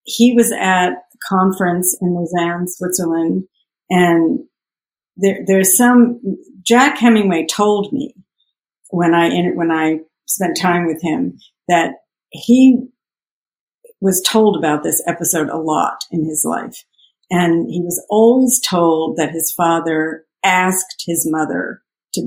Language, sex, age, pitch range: English, female, 50-69, 160-190 Hz